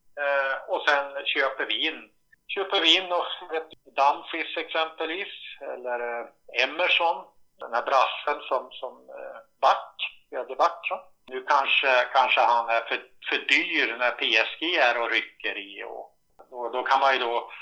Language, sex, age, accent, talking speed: Swedish, male, 50-69, Norwegian, 140 wpm